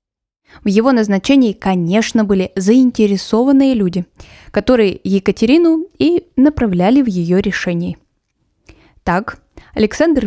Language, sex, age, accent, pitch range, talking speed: Russian, female, 10-29, native, 185-255 Hz, 95 wpm